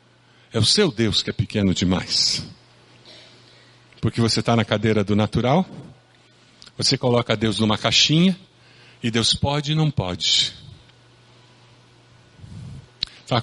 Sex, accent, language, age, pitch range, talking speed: male, Brazilian, Portuguese, 50-69, 115-185 Hz, 120 wpm